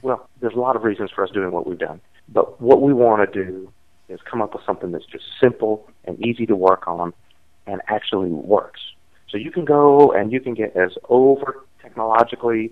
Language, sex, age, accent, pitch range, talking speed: English, male, 40-59, American, 100-115 Hz, 210 wpm